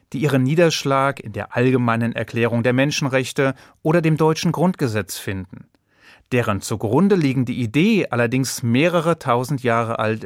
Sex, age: male, 30-49